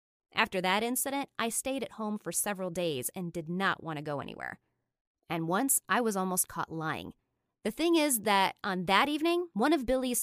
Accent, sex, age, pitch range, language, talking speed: American, female, 20-39, 185-270 Hz, English, 200 wpm